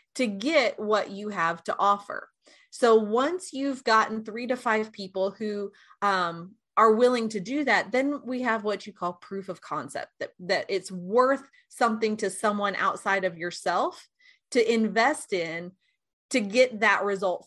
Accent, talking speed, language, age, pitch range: American, 165 wpm, English, 30-49, 185-245 Hz